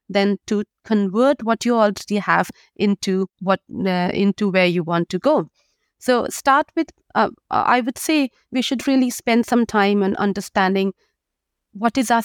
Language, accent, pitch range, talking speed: English, Indian, 205-260 Hz, 165 wpm